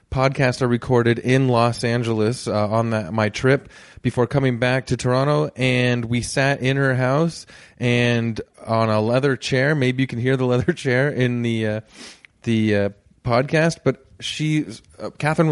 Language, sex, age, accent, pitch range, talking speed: English, male, 20-39, American, 115-135 Hz, 170 wpm